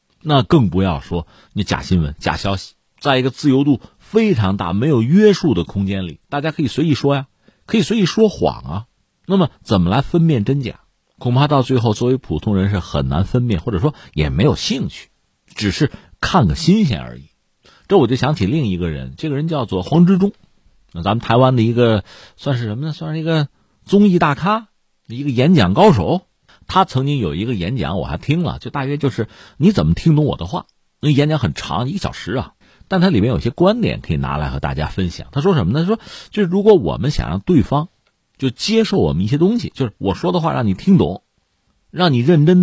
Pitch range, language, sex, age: 100-165 Hz, Chinese, male, 50-69